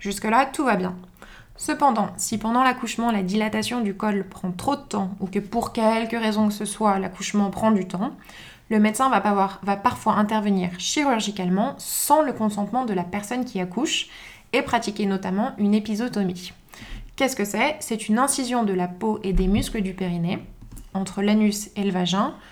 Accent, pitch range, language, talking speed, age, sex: French, 190-225 Hz, French, 180 wpm, 20-39, female